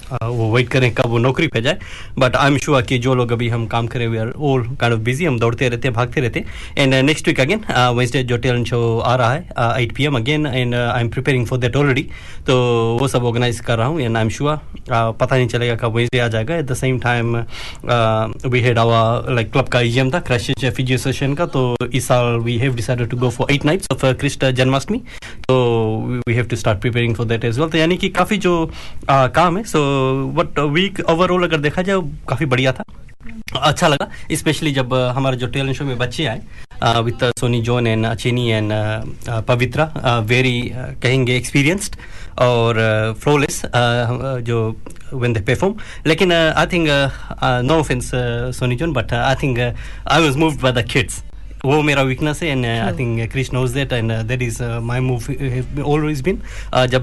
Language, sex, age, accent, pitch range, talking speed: Hindi, male, 20-39, native, 120-140 Hz, 175 wpm